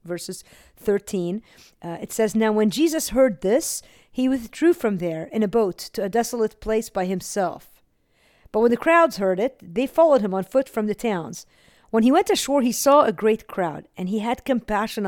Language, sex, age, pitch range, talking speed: English, female, 50-69, 175-245 Hz, 200 wpm